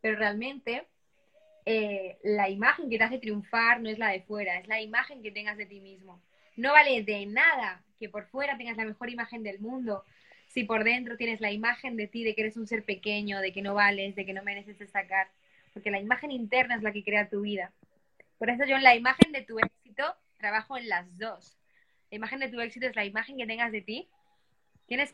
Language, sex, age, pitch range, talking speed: Spanish, female, 20-39, 205-240 Hz, 225 wpm